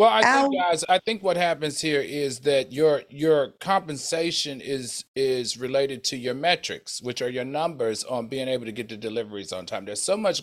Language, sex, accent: English, male, American